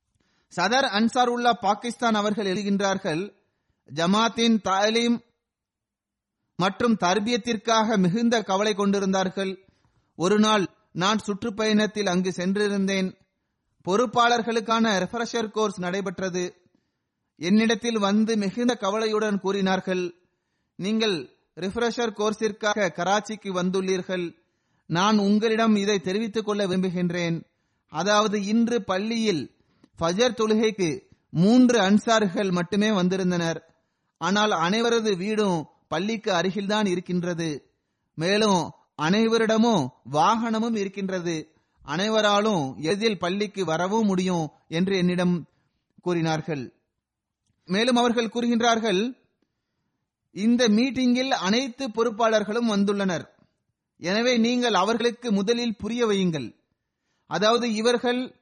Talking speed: 80 wpm